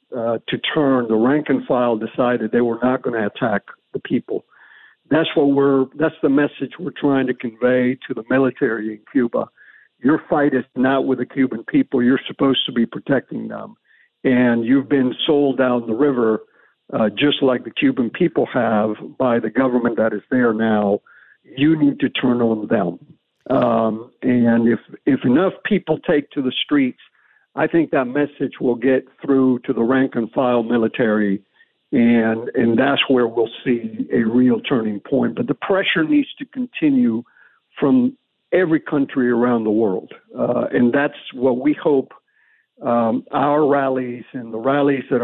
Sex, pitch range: male, 115-145 Hz